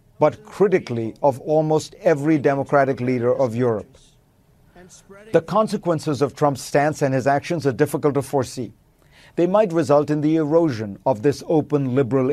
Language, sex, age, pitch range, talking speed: English, male, 50-69, 135-165 Hz, 150 wpm